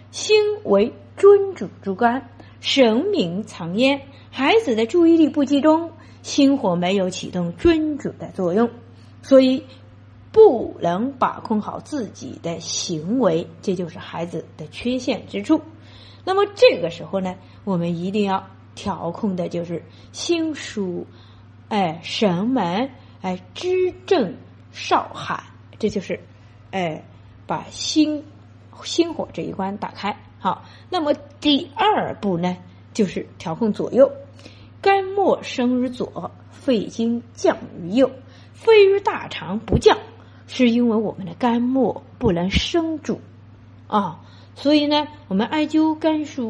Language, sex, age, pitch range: Chinese, female, 30-49, 185-310 Hz